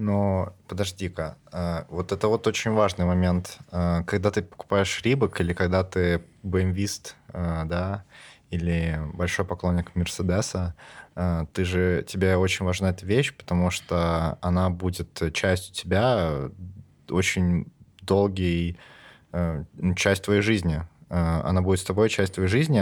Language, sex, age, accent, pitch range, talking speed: Russian, male, 20-39, native, 90-100 Hz, 115 wpm